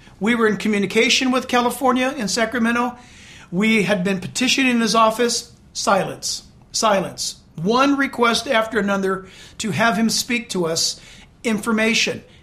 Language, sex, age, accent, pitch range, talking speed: English, male, 50-69, American, 190-235 Hz, 130 wpm